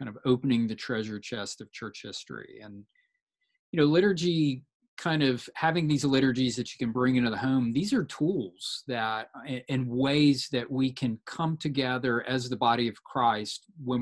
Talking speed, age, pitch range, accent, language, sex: 180 wpm, 40-59, 115-145 Hz, American, English, male